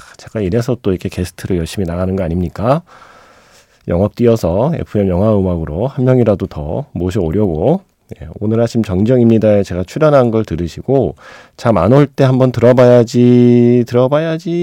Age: 40-59